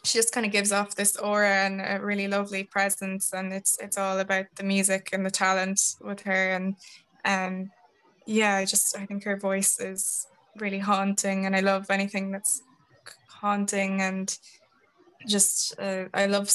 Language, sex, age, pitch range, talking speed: English, female, 10-29, 190-200 Hz, 175 wpm